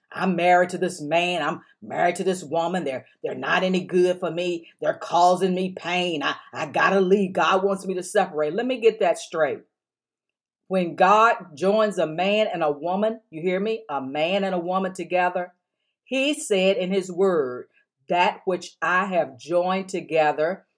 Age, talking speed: 50-69, 185 wpm